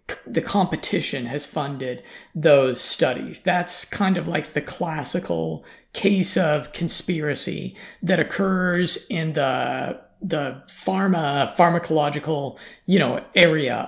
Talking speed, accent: 110 wpm, American